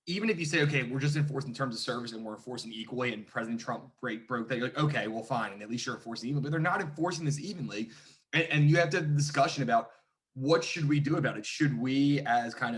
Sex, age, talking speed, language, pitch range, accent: male, 20-39, 270 wpm, English, 120-145 Hz, American